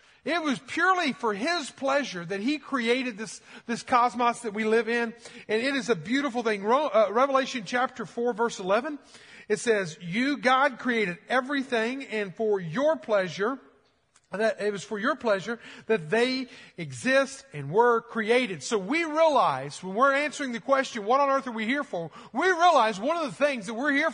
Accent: American